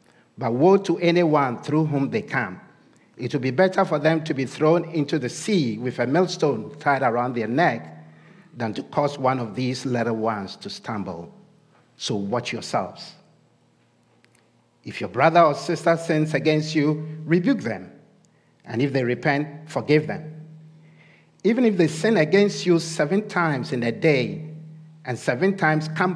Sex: male